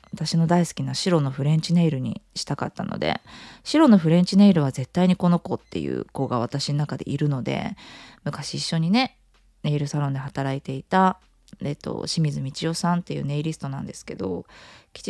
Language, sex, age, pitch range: Japanese, female, 20-39, 140-180 Hz